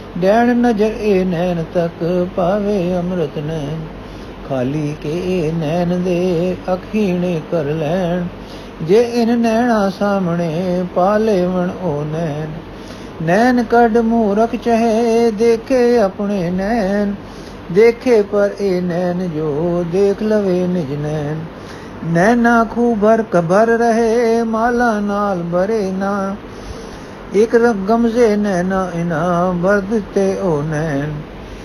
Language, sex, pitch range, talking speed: Punjabi, male, 175-230 Hz, 110 wpm